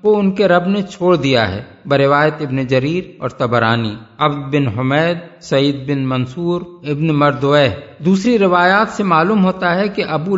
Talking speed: 160 wpm